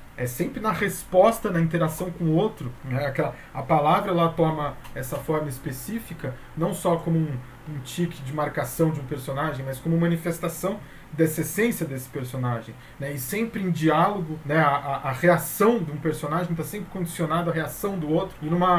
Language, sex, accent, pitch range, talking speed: Portuguese, male, Brazilian, 135-175 Hz, 185 wpm